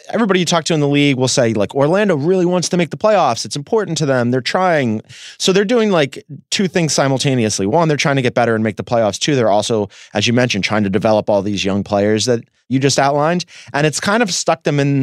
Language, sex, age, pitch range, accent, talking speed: English, male, 30-49, 125-170 Hz, American, 255 wpm